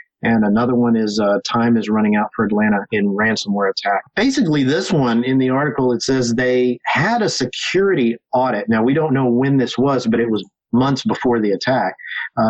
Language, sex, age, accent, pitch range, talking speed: English, male, 40-59, American, 115-135 Hz, 200 wpm